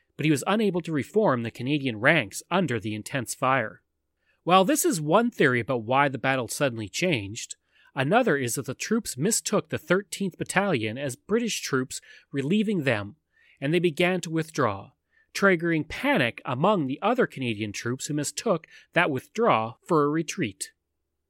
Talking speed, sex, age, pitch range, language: 160 wpm, male, 30-49, 120-190 Hz, English